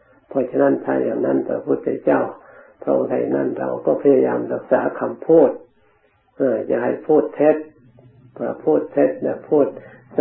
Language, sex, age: Thai, male, 60-79